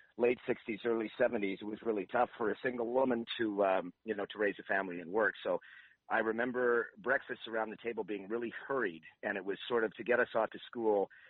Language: English